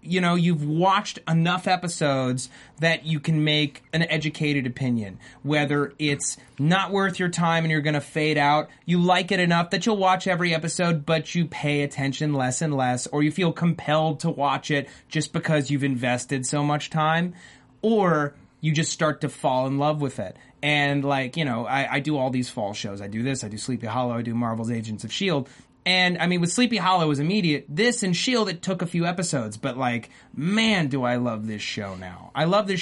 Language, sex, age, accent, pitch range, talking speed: English, male, 30-49, American, 135-185 Hz, 215 wpm